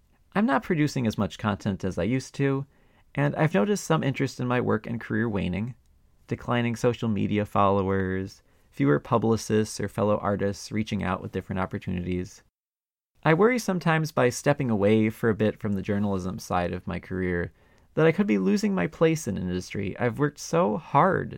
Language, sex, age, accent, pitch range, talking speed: English, male, 30-49, American, 95-150 Hz, 180 wpm